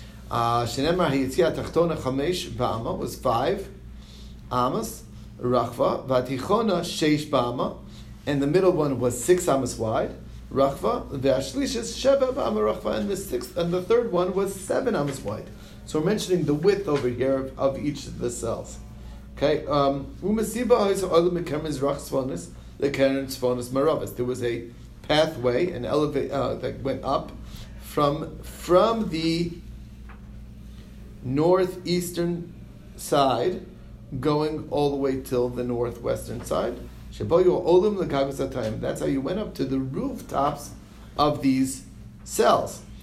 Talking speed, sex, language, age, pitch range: 120 wpm, male, English, 40-59, 125-170 Hz